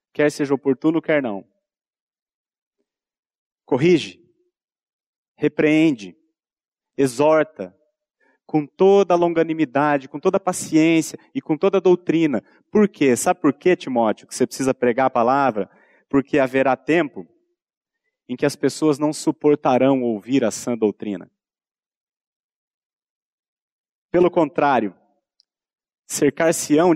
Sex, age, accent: male, 30-49, Brazilian